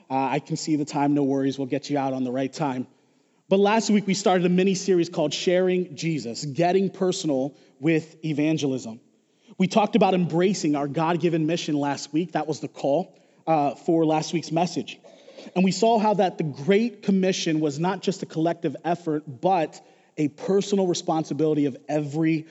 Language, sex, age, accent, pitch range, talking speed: English, male, 30-49, American, 145-185 Hz, 180 wpm